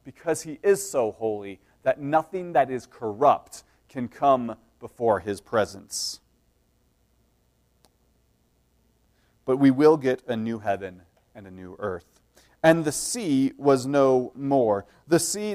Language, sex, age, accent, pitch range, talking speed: English, male, 30-49, American, 130-180 Hz, 130 wpm